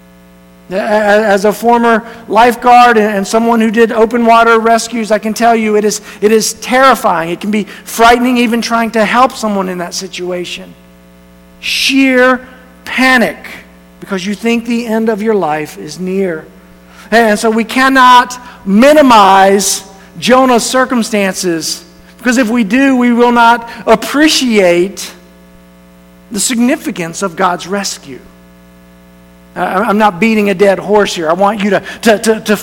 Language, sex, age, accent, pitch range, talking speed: English, male, 50-69, American, 190-235 Hz, 145 wpm